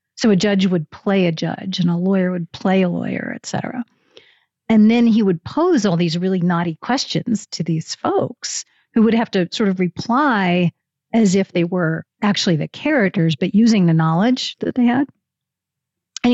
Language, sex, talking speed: English, female, 185 wpm